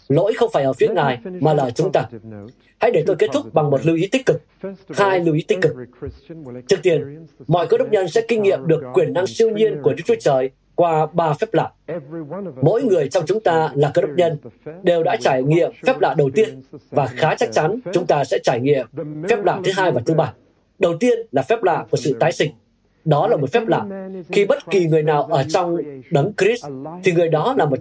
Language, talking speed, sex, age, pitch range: Vietnamese, 235 wpm, male, 20-39, 145-195 Hz